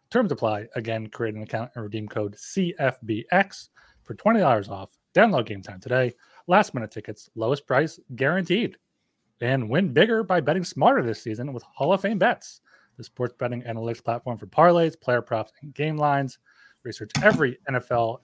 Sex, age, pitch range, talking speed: male, 30-49, 110-150 Hz, 165 wpm